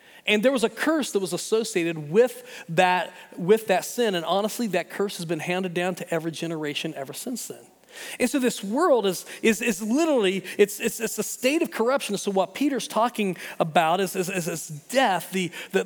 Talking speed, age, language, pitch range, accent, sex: 200 wpm, 40-59, English, 160-215 Hz, American, male